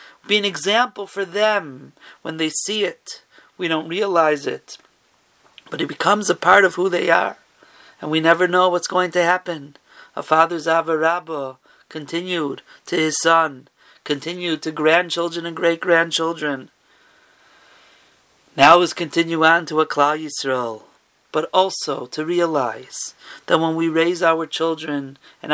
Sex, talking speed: male, 145 wpm